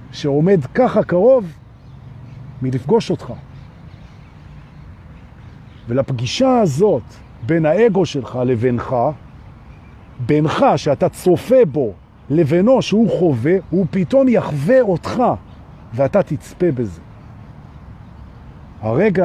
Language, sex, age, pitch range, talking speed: Hebrew, male, 50-69, 115-175 Hz, 80 wpm